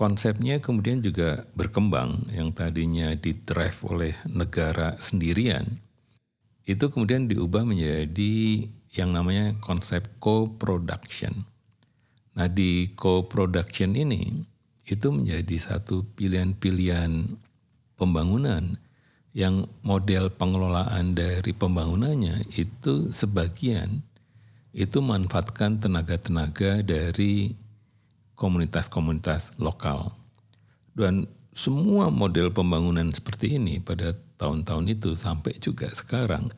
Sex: male